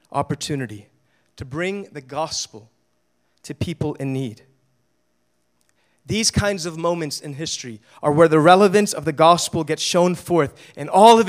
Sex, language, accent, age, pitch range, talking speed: male, English, American, 30-49, 145-200 Hz, 150 wpm